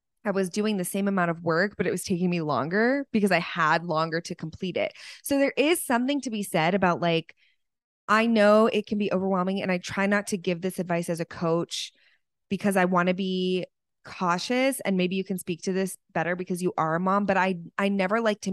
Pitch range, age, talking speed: 170-220 Hz, 20-39, 235 wpm